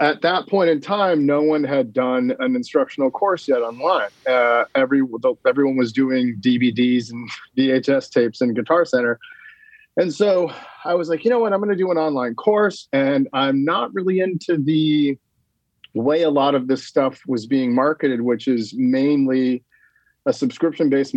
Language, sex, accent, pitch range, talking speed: English, male, American, 125-165 Hz, 170 wpm